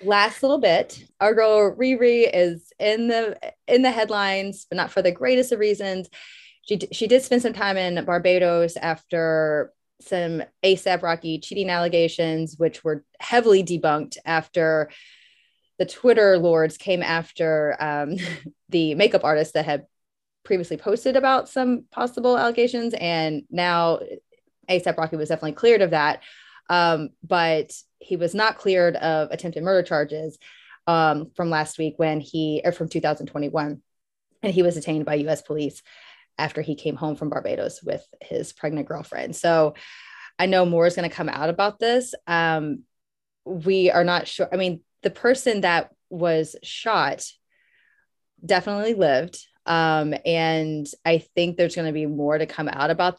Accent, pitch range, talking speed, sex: American, 155-200 Hz, 155 wpm, female